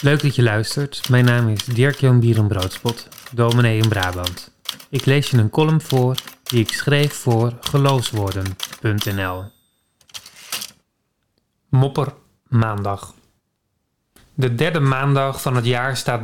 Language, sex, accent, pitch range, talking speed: Dutch, male, Dutch, 120-155 Hz, 115 wpm